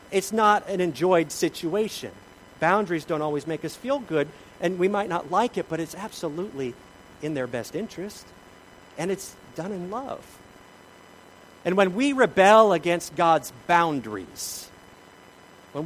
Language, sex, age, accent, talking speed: English, male, 40-59, American, 145 wpm